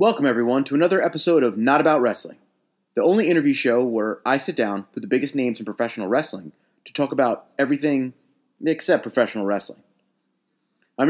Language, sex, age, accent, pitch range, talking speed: English, male, 30-49, American, 130-175 Hz, 175 wpm